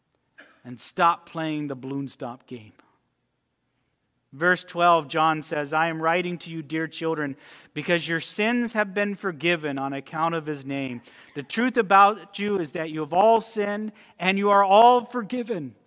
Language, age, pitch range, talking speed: English, 40-59, 160-215 Hz, 165 wpm